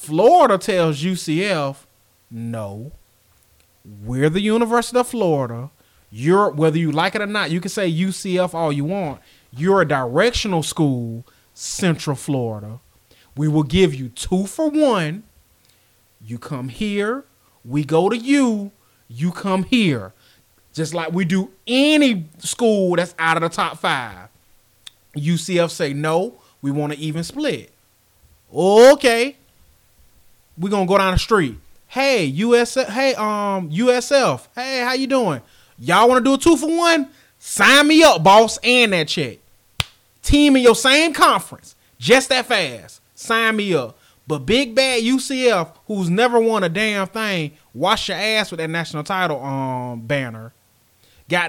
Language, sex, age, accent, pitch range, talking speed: English, male, 30-49, American, 130-220 Hz, 150 wpm